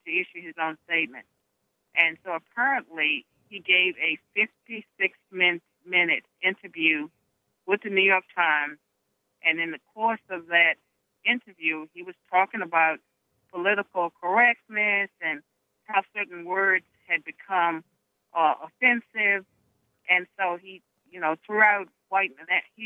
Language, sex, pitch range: English, female, 160-195 Hz